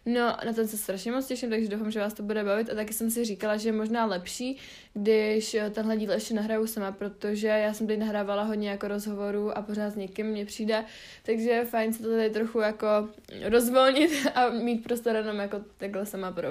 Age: 20-39